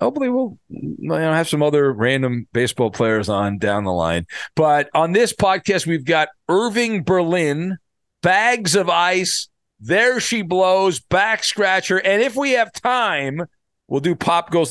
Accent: American